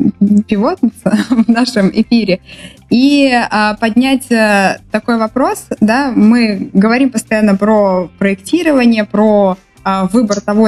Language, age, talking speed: Russian, 20-39, 105 wpm